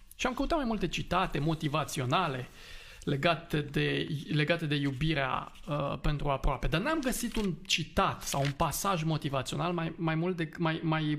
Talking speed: 160 wpm